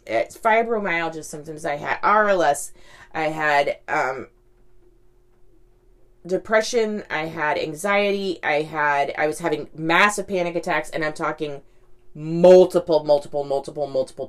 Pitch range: 120-170 Hz